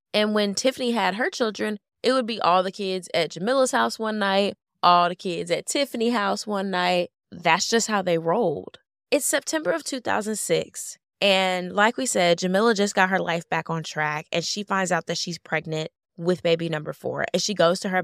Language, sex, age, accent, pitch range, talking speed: English, female, 10-29, American, 170-250 Hz, 205 wpm